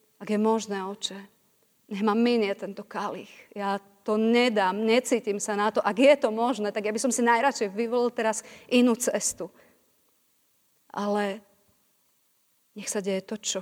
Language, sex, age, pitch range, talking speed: Slovak, female, 30-49, 195-220 Hz, 155 wpm